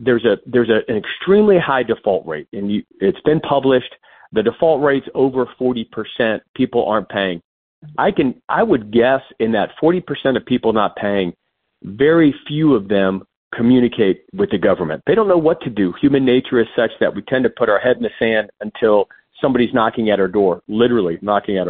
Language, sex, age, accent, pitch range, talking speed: English, male, 40-59, American, 120-165 Hz, 195 wpm